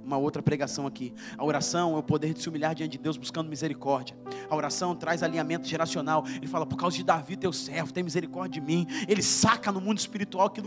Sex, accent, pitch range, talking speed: male, Brazilian, 210-315 Hz, 225 wpm